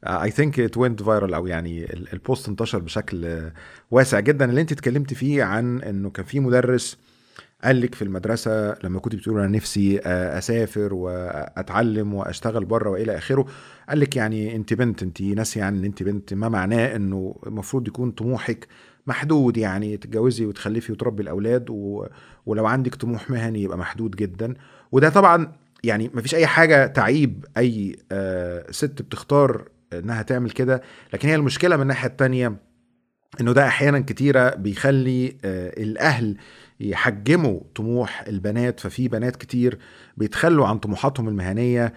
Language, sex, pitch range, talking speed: Arabic, male, 100-130 Hz, 145 wpm